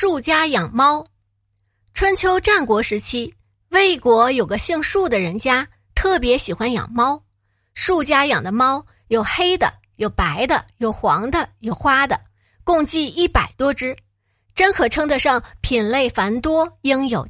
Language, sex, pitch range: Chinese, female, 210-315 Hz